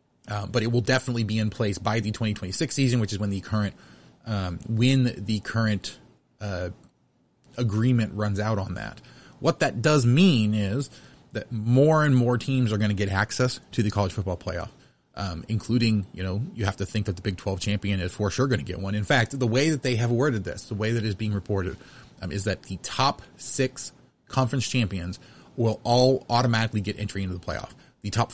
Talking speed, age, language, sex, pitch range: 215 wpm, 30-49, English, male, 100-125 Hz